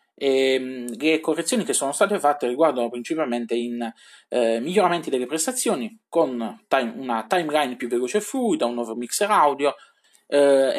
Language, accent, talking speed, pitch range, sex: Italian, native, 150 wpm, 120-180 Hz, male